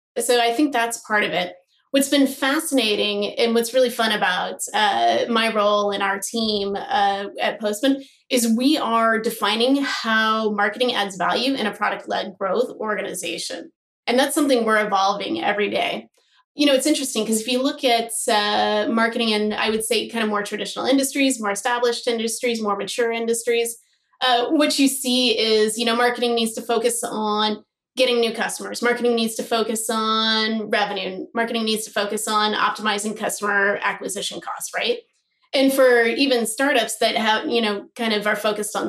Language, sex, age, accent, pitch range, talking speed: English, female, 20-39, American, 210-255 Hz, 175 wpm